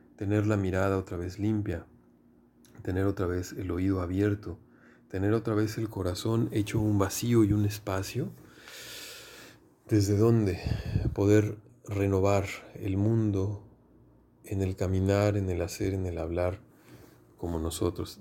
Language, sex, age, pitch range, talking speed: Spanish, male, 40-59, 85-105 Hz, 130 wpm